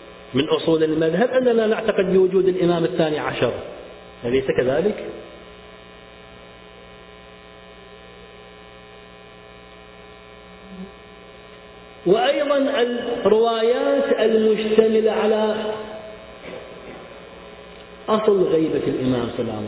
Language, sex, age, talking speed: Arabic, male, 40-59, 60 wpm